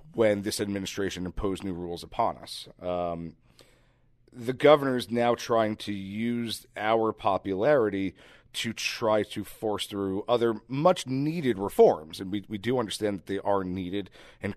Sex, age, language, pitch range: male, 40-59, English, 95-115 Hz